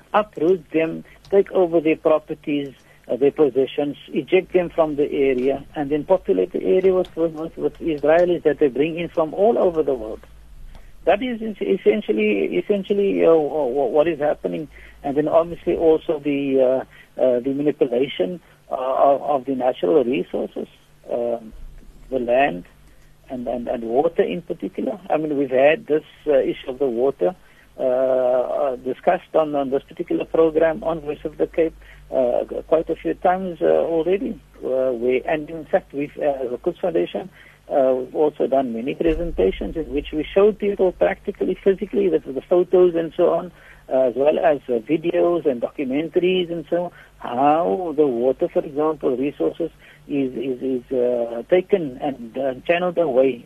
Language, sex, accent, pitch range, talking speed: English, male, Indian, 135-175 Hz, 165 wpm